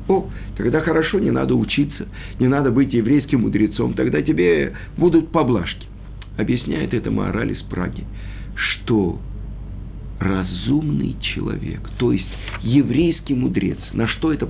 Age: 50-69